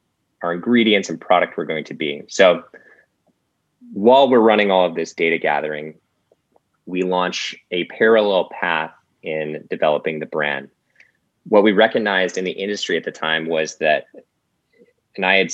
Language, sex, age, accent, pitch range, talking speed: English, male, 20-39, American, 80-95 Hz, 155 wpm